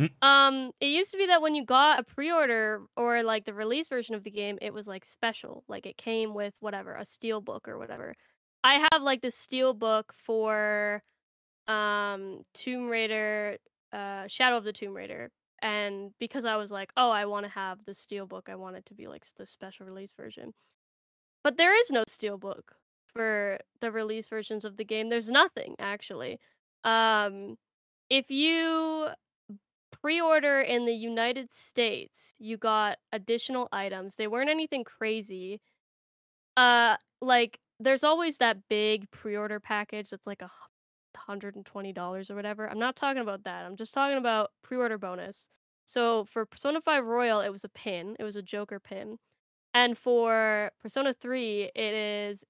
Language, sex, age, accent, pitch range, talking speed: English, female, 10-29, American, 205-255 Hz, 170 wpm